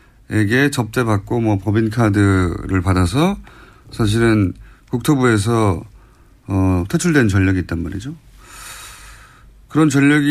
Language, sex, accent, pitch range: Korean, male, native, 105-140 Hz